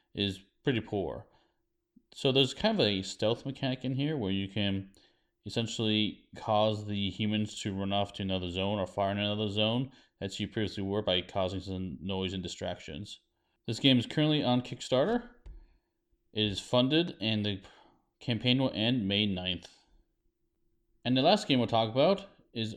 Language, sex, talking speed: English, male, 170 wpm